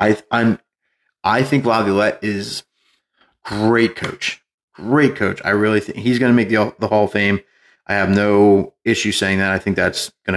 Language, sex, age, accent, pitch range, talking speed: English, male, 30-49, American, 100-120 Hz, 185 wpm